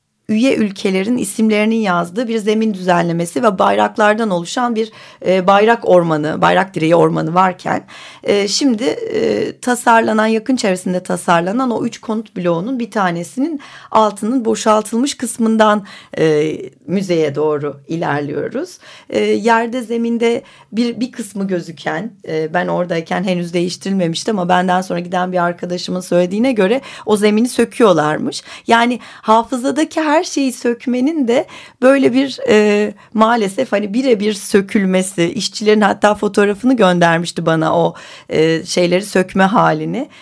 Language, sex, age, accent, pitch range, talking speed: Turkish, female, 40-59, native, 175-235 Hz, 125 wpm